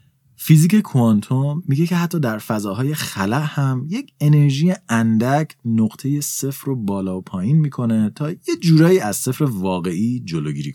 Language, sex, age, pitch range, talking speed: Persian, male, 30-49, 115-170 Hz, 145 wpm